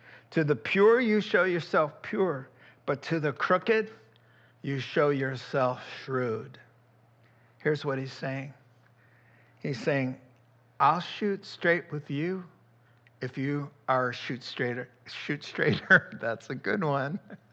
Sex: male